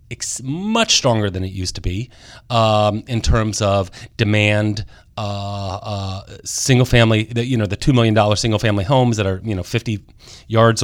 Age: 30-49